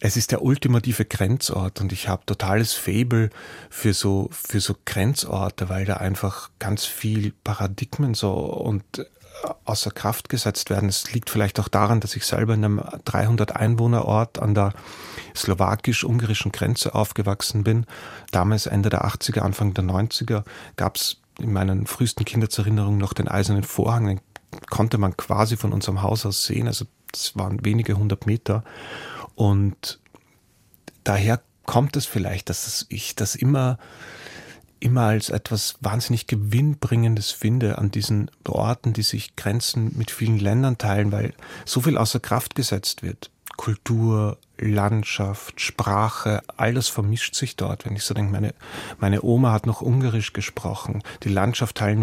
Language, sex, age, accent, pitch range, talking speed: German, male, 30-49, German, 100-120 Hz, 150 wpm